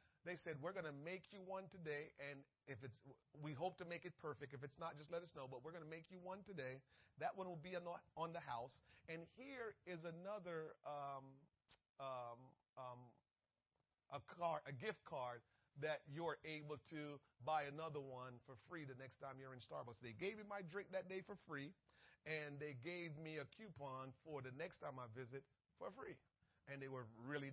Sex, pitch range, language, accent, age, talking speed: male, 135-195 Hz, English, American, 40-59, 205 wpm